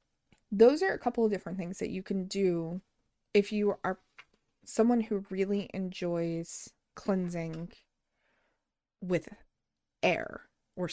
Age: 30-49